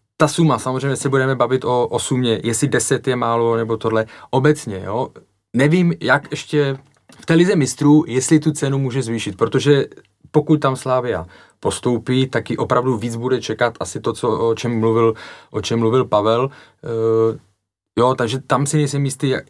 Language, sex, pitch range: Czech, male, 115-135 Hz